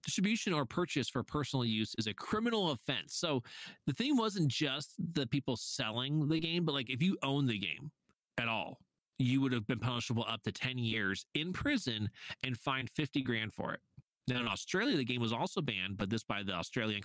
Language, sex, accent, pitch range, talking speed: English, male, American, 115-155 Hz, 210 wpm